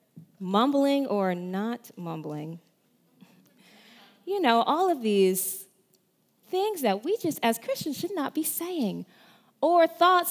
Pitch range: 220-335 Hz